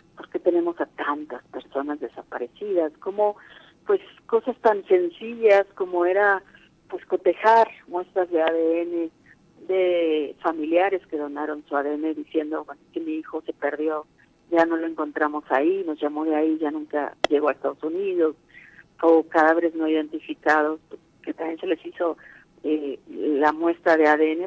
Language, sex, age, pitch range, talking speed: Spanish, female, 40-59, 150-180 Hz, 145 wpm